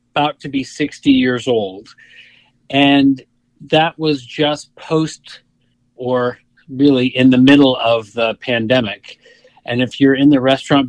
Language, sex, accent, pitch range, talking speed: English, male, American, 120-145 Hz, 140 wpm